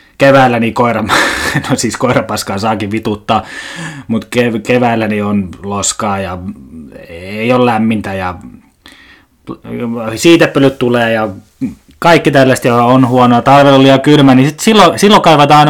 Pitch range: 110-155 Hz